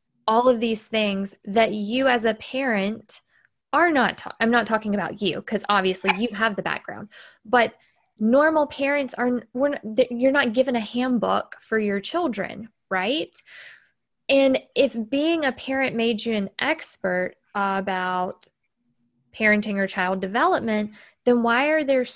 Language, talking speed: English, 145 wpm